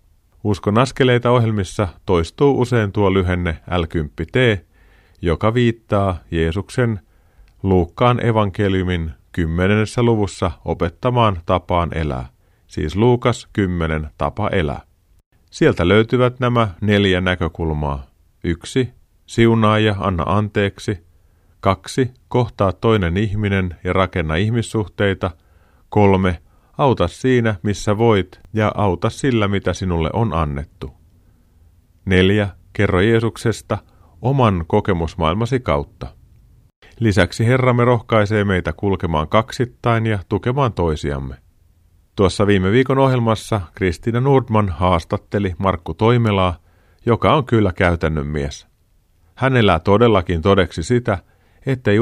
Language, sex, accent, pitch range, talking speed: Finnish, male, native, 85-110 Hz, 100 wpm